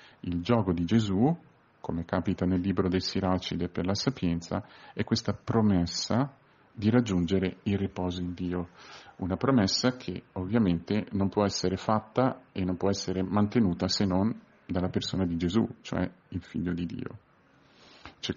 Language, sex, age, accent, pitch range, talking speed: Italian, male, 40-59, native, 90-110 Hz, 155 wpm